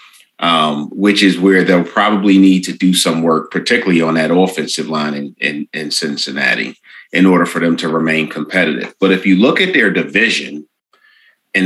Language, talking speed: English, 180 wpm